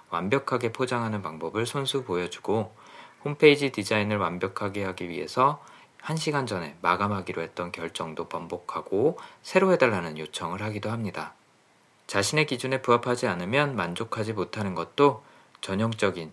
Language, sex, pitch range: Korean, male, 100-135 Hz